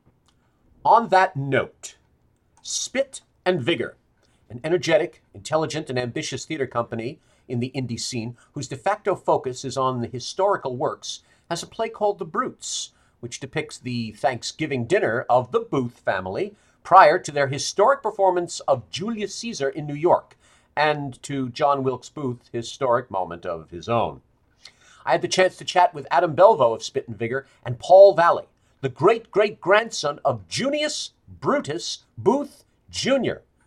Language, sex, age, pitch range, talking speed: English, male, 50-69, 120-170 Hz, 150 wpm